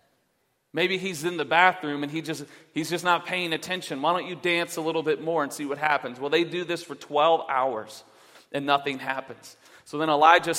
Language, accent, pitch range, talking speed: English, American, 140-160 Hz, 215 wpm